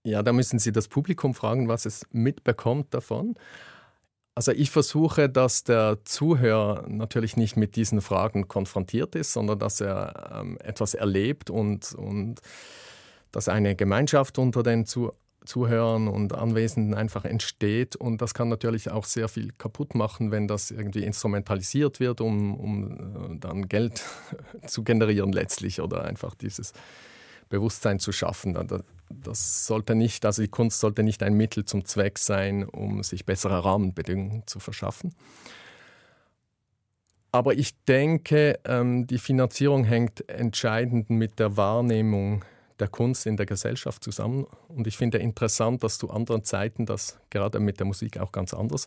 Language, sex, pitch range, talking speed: German, male, 105-120 Hz, 145 wpm